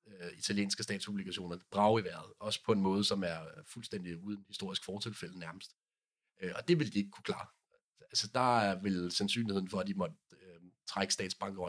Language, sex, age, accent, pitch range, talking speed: Danish, male, 40-59, native, 95-120 Hz, 175 wpm